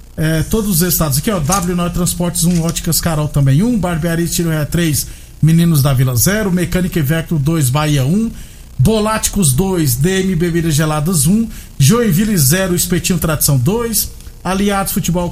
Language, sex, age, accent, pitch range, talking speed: Portuguese, male, 50-69, Brazilian, 160-205 Hz, 165 wpm